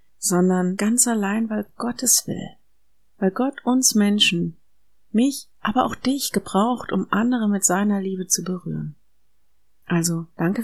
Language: German